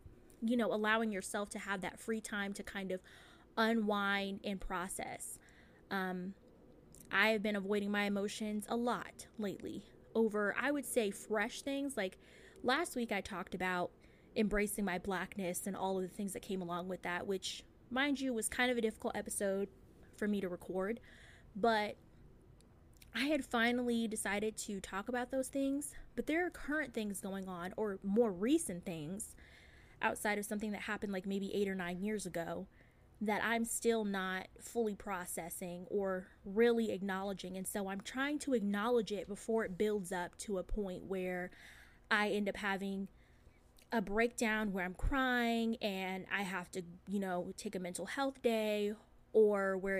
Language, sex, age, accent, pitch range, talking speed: English, female, 20-39, American, 185-225 Hz, 170 wpm